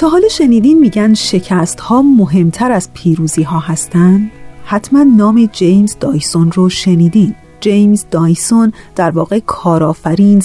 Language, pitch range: Persian, 170-245 Hz